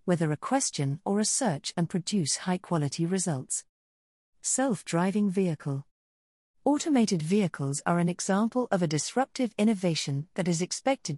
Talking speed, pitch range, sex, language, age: 130 wpm, 150-205 Hz, female, English, 40-59